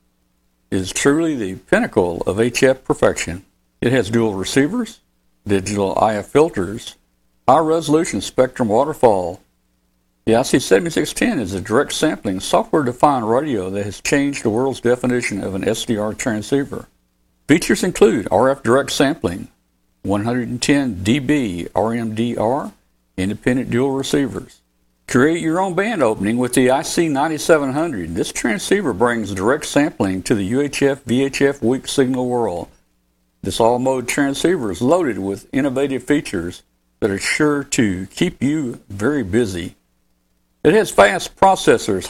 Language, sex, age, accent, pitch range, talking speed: English, male, 60-79, American, 85-135 Hz, 125 wpm